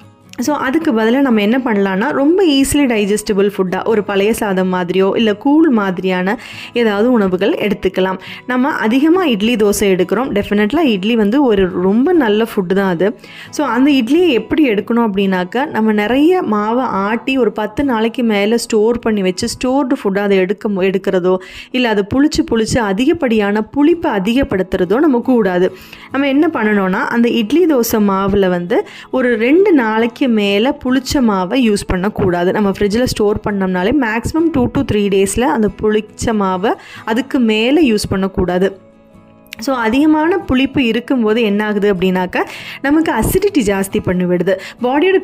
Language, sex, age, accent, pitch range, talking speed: Tamil, female, 20-39, native, 200-265 Hz, 140 wpm